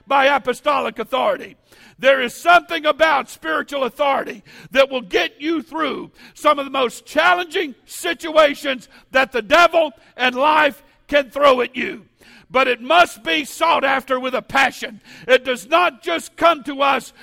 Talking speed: 155 wpm